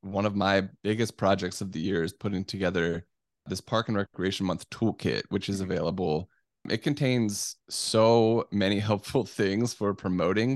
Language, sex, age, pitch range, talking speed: English, male, 10-29, 95-115 Hz, 160 wpm